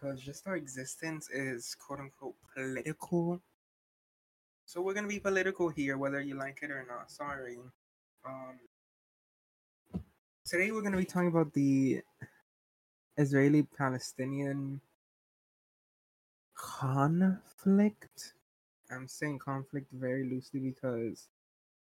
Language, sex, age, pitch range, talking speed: English, male, 20-39, 130-160 Hz, 95 wpm